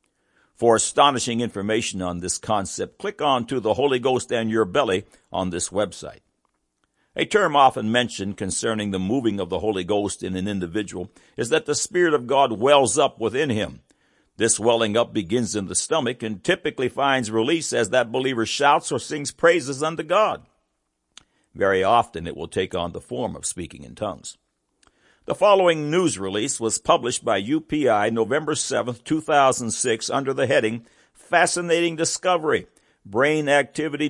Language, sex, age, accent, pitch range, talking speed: English, male, 60-79, American, 105-150 Hz, 160 wpm